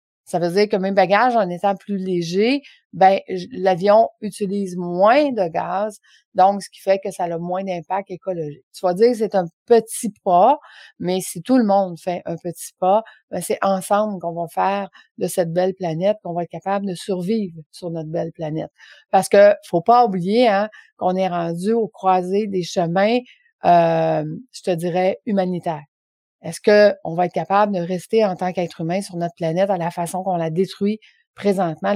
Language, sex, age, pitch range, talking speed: French, female, 30-49, 180-220 Hz, 190 wpm